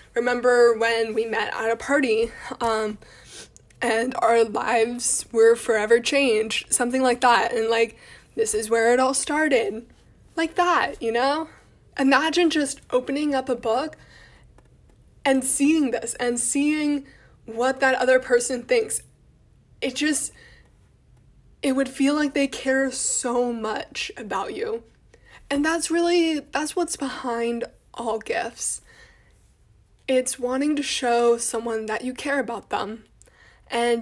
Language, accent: English, American